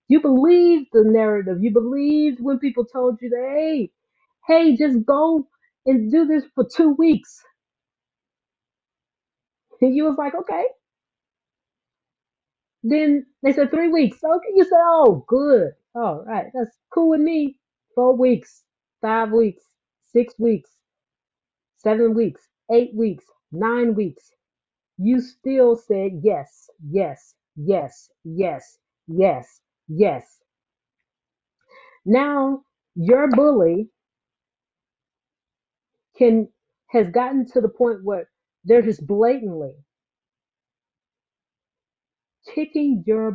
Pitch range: 210-280 Hz